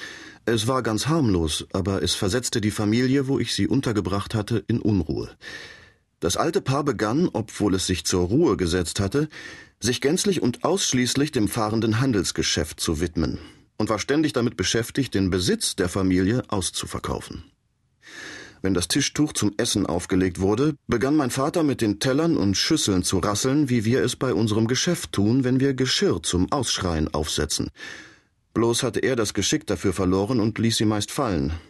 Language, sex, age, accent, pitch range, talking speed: German, male, 40-59, German, 100-130 Hz, 165 wpm